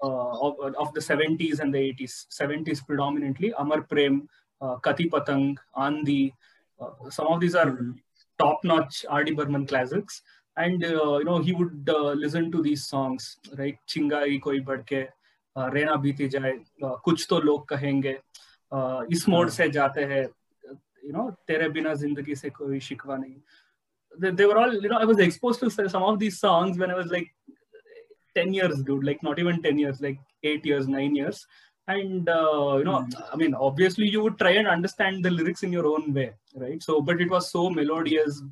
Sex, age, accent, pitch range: male, 20-39, native, 140-175 Hz